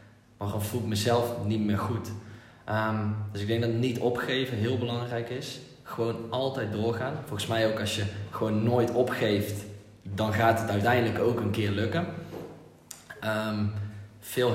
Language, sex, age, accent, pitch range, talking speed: Dutch, male, 20-39, Dutch, 105-135 Hz, 160 wpm